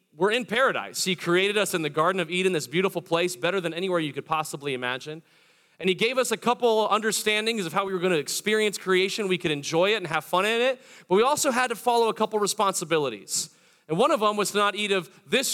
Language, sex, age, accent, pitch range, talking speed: English, male, 30-49, American, 170-205 Hz, 245 wpm